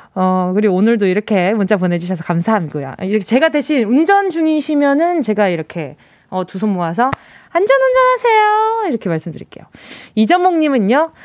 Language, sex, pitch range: Korean, female, 225-330 Hz